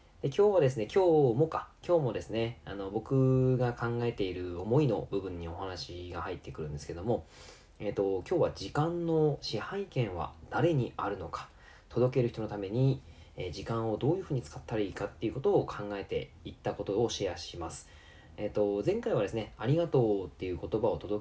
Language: Japanese